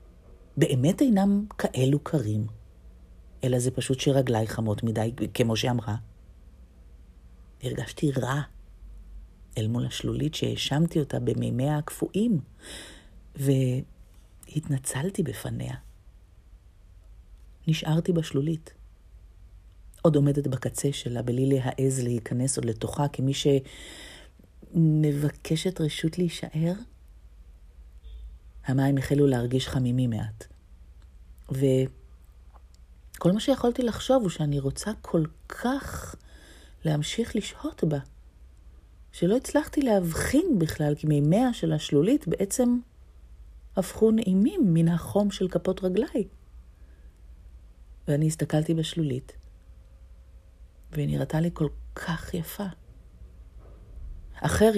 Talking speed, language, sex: 90 wpm, Hebrew, female